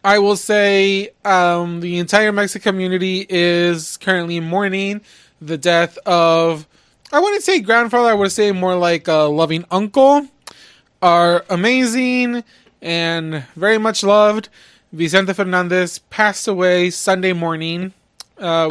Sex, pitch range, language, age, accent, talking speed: male, 165-200 Hz, English, 20-39, American, 125 wpm